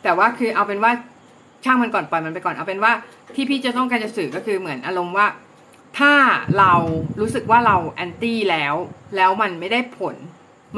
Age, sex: 30-49, female